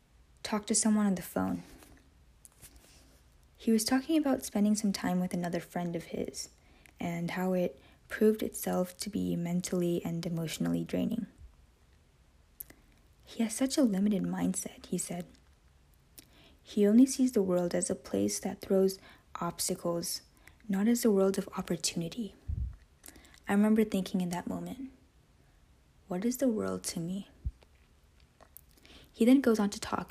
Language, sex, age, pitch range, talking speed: English, female, 20-39, 160-215 Hz, 145 wpm